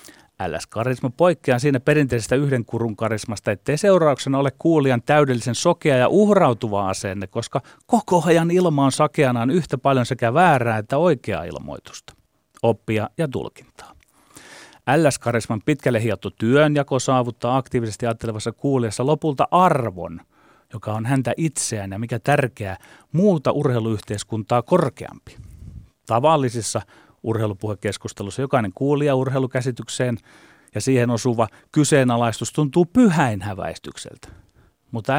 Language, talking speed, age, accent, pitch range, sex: Finnish, 115 wpm, 30-49, native, 110-150 Hz, male